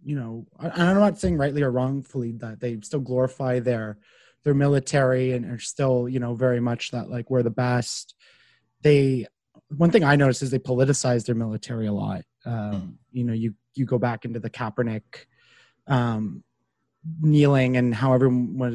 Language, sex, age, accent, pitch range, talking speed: English, male, 30-49, American, 120-155 Hz, 175 wpm